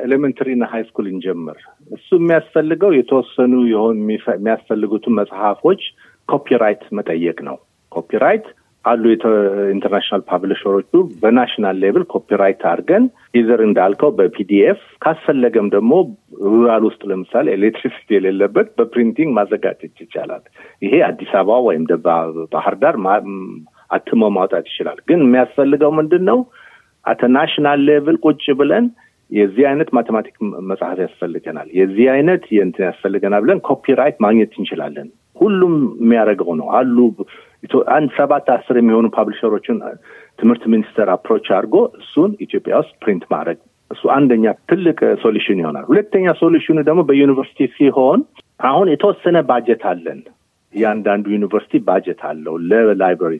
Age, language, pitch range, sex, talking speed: 50-69, Amharic, 105-150 Hz, male, 110 wpm